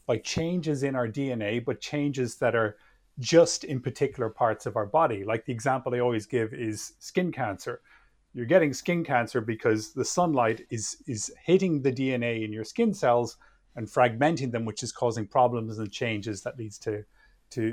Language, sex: English, male